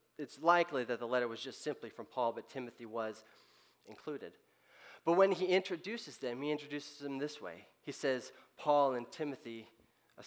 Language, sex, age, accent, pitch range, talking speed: English, male, 30-49, American, 120-145 Hz, 175 wpm